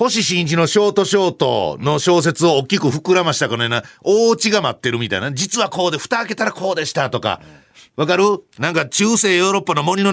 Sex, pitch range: male, 155-225 Hz